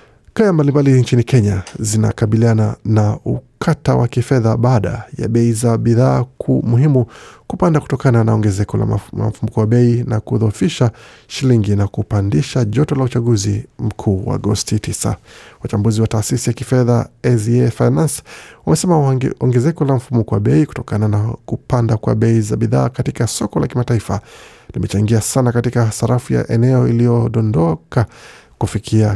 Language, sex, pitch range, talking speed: Swahili, male, 110-125 Hz, 140 wpm